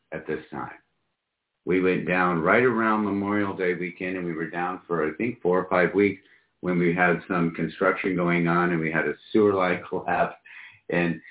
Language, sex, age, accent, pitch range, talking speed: English, male, 50-69, American, 85-105 Hz, 195 wpm